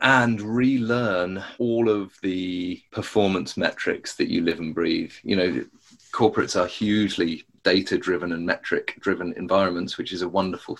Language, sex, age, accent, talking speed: English, male, 30-49, British, 140 wpm